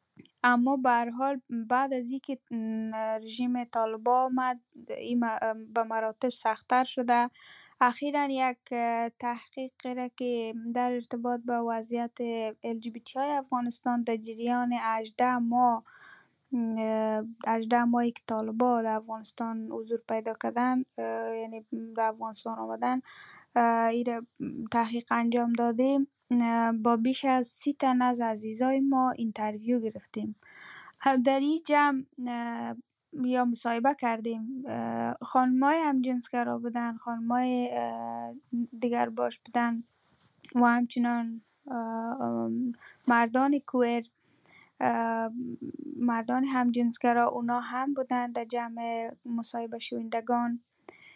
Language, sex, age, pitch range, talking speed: English, female, 10-29, 230-250 Hz, 95 wpm